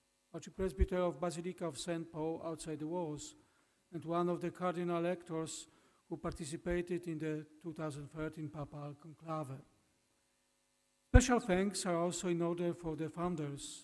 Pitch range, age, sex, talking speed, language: 160-190 Hz, 50-69, male, 135 wpm, Polish